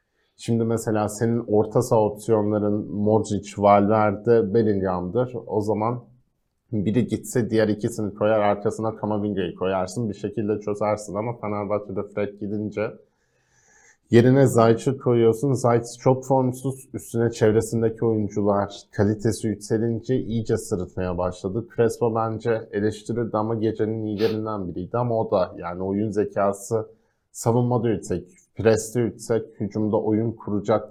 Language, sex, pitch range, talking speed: Turkish, male, 100-115 Hz, 115 wpm